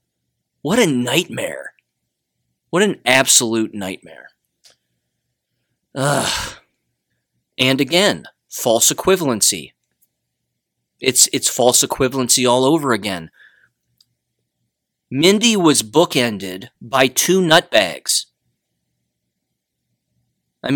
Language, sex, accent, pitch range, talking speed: English, male, American, 120-170 Hz, 75 wpm